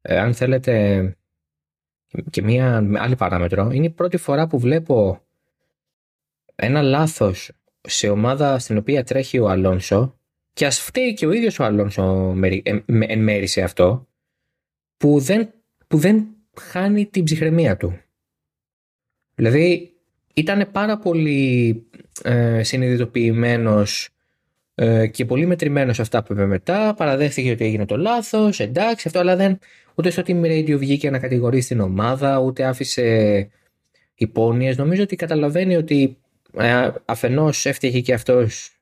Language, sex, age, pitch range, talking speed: Greek, male, 20-39, 105-160 Hz, 135 wpm